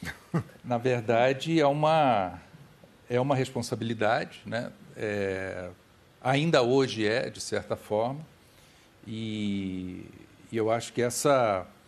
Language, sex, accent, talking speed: Portuguese, male, Brazilian, 105 wpm